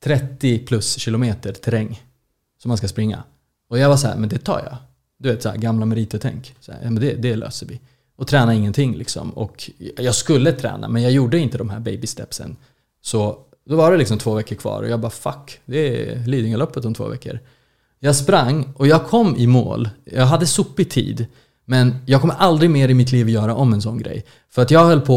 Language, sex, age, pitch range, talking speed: Swedish, male, 20-39, 115-140 Hz, 225 wpm